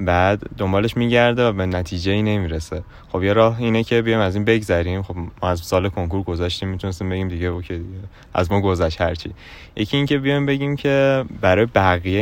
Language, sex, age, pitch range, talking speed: Persian, male, 20-39, 90-115 Hz, 195 wpm